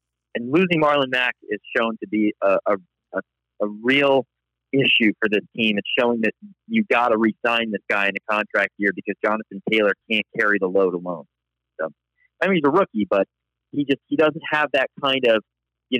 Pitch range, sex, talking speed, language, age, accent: 105-140 Hz, male, 200 wpm, English, 40-59, American